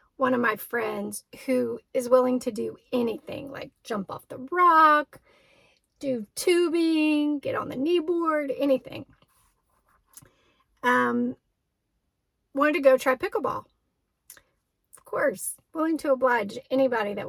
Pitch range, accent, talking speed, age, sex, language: 235-280 Hz, American, 120 wpm, 40-59, female, English